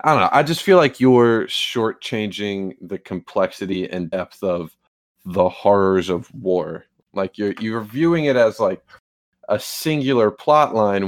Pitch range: 100-125 Hz